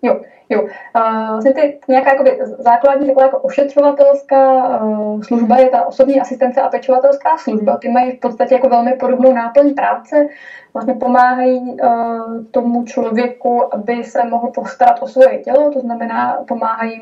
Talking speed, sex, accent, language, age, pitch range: 155 wpm, female, native, Czech, 20-39, 230-260 Hz